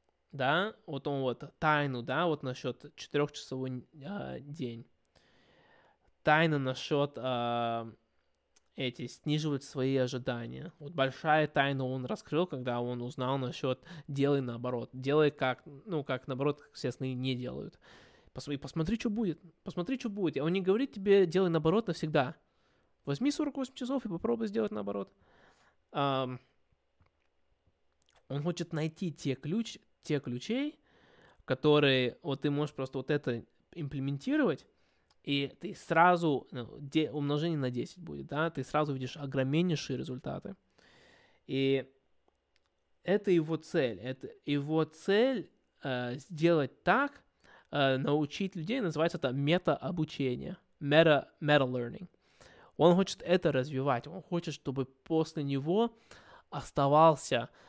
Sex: male